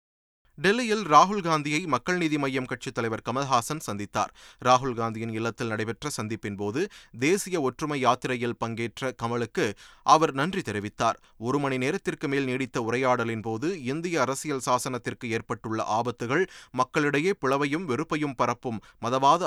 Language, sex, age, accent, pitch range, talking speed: Tamil, male, 30-49, native, 115-155 Hz, 115 wpm